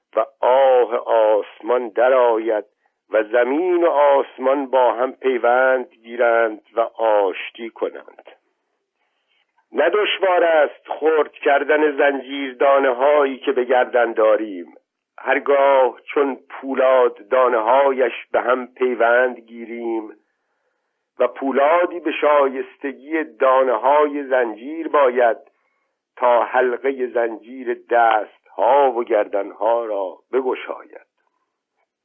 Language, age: Persian, 50-69